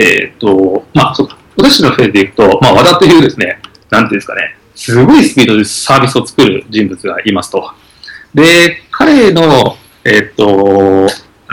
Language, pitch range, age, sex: Japanese, 125-180 Hz, 40-59, male